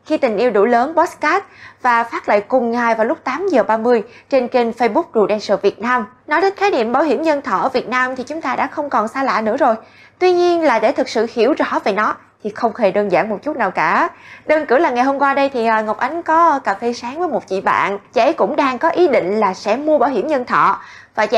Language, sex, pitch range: Vietnamese, female, 220-300 Hz